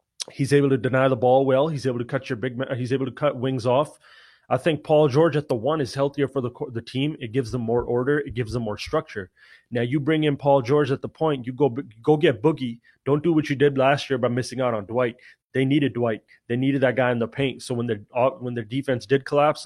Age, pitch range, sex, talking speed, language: 30-49, 125-145 Hz, male, 265 wpm, English